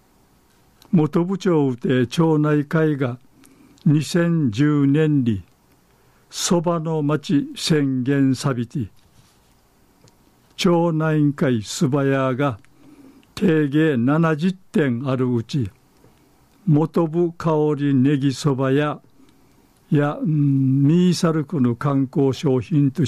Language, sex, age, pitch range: Japanese, male, 60-79, 130-160 Hz